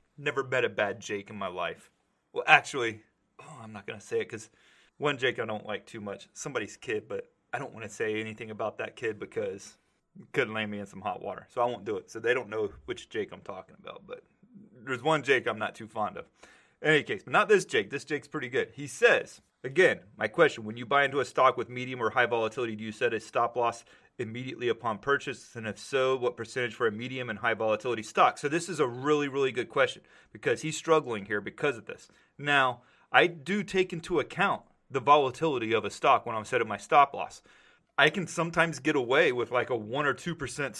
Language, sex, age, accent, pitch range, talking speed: English, male, 30-49, American, 120-180 Hz, 235 wpm